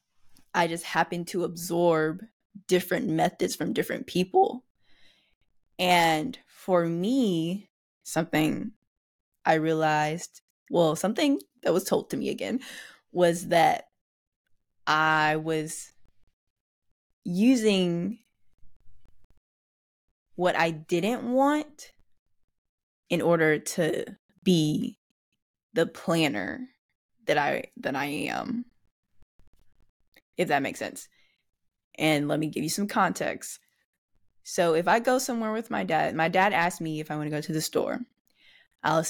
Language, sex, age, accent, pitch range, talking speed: English, female, 10-29, American, 160-225 Hz, 115 wpm